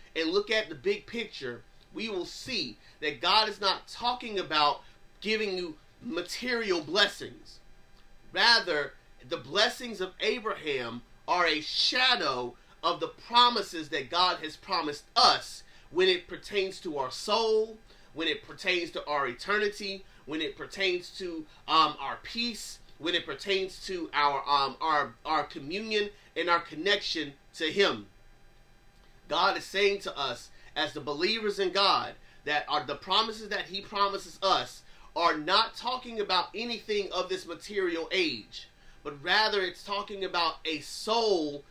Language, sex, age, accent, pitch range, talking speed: English, male, 30-49, American, 165-220 Hz, 145 wpm